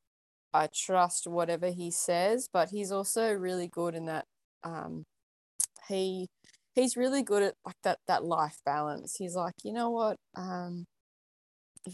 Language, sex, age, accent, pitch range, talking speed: English, female, 20-39, Australian, 165-195 Hz, 150 wpm